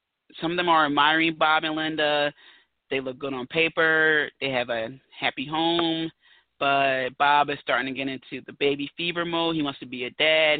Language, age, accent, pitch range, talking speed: English, 20-39, American, 140-170 Hz, 200 wpm